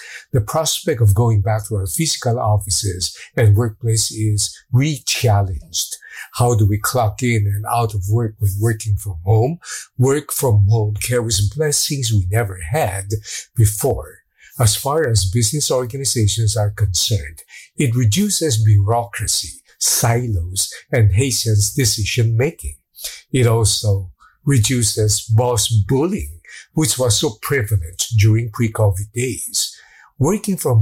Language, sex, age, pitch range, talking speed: English, male, 50-69, 105-125 Hz, 125 wpm